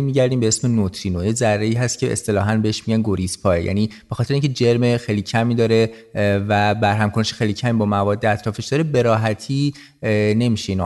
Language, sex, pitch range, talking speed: Persian, male, 105-125 Hz, 170 wpm